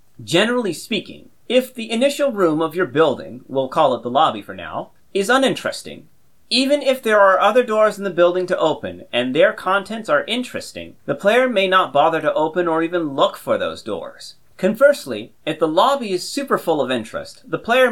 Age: 40-59